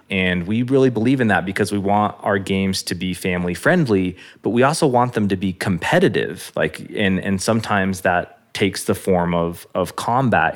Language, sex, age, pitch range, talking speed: English, male, 20-39, 85-105 Hz, 195 wpm